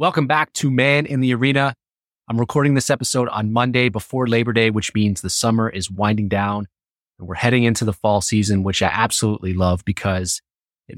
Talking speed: 195 wpm